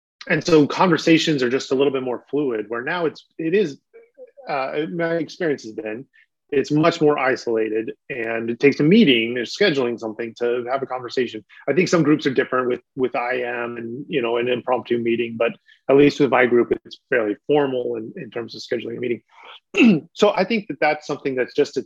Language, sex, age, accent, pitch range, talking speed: English, male, 30-49, American, 120-155 Hz, 210 wpm